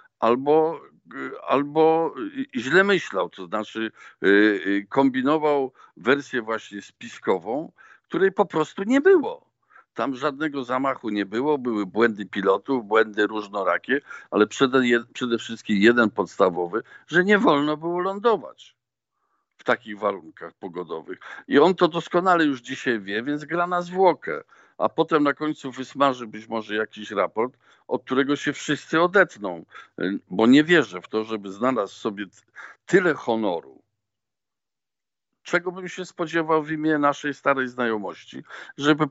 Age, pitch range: 50-69, 110-160 Hz